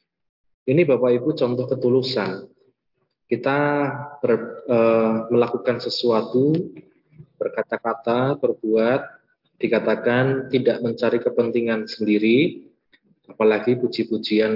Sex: male